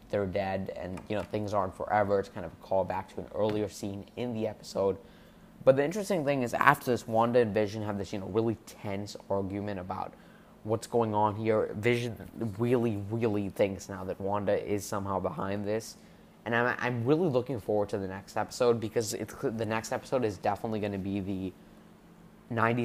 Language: English